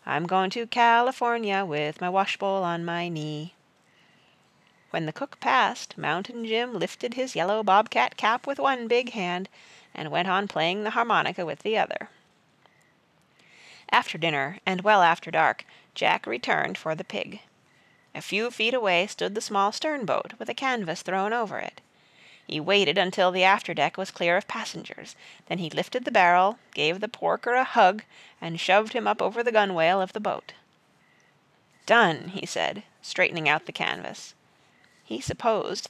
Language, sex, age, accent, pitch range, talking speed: English, female, 40-59, American, 175-235 Hz, 160 wpm